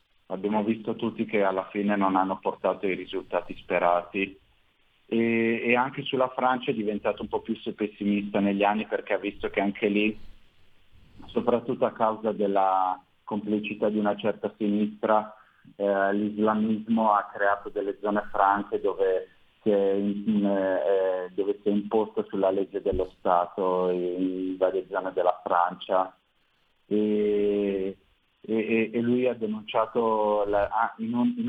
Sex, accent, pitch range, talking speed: male, native, 95-110 Hz, 135 wpm